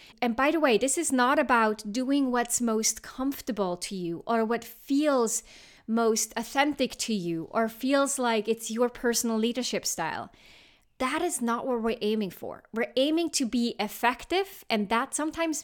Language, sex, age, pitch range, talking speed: English, female, 30-49, 220-255 Hz, 170 wpm